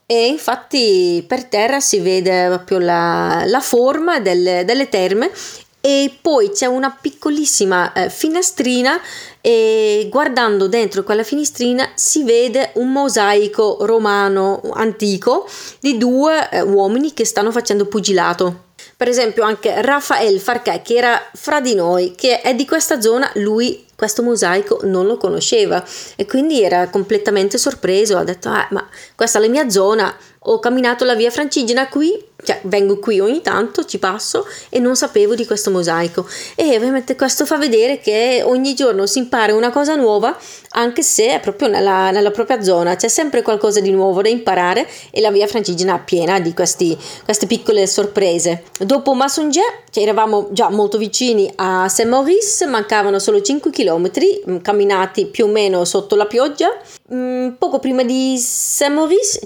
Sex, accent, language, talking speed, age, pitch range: female, native, Italian, 160 wpm, 30-49, 200-285 Hz